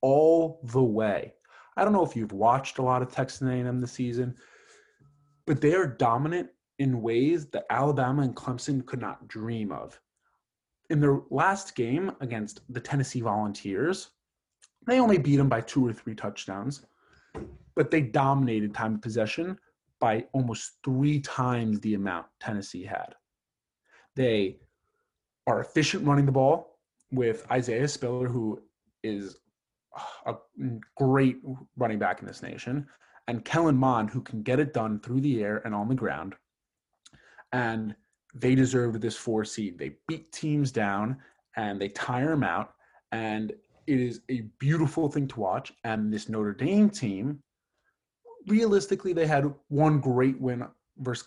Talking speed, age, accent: 150 wpm, 30-49, American